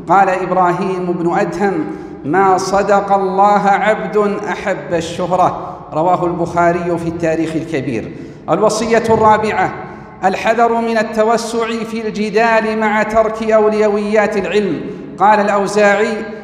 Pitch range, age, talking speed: 185-215 Hz, 40-59, 100 wpm